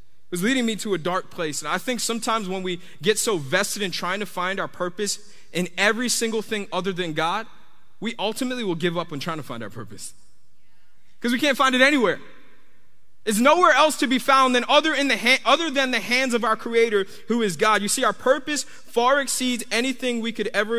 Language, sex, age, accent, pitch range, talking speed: English, male, 20-39, American, 170-235 Hz, 225 wpm